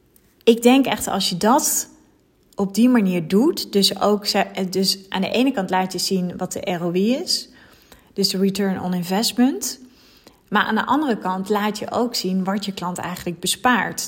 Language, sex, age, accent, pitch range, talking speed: Dutch, female, 30-49, Dutch, 180-215 Hz, 185 wpm